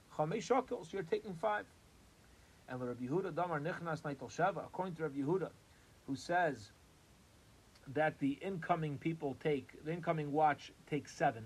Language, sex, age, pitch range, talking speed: English, male, 30-49, 135-170 Hz, 115 wpm